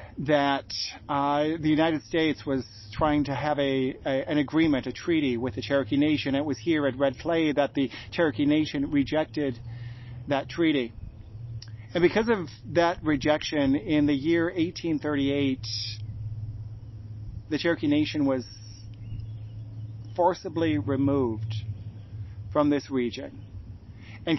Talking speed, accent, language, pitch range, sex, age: 125 wpm, American, English, 105-150 Hz, male, 40-59